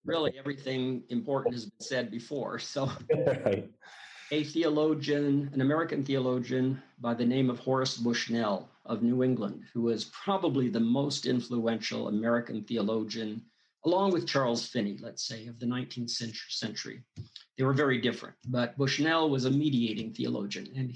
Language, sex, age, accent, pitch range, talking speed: English, male, 50-69, American, 120-140 Hz, 145 wpm